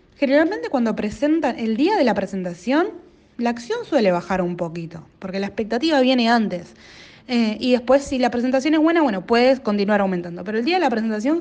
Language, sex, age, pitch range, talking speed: Spanish, female, 20-39, 200-255 Hz, 195 wpm